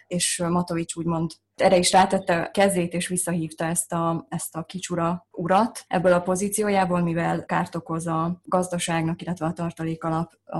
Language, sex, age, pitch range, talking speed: Hungarian, female, 20-39, 165-180 Hz, 155 wpm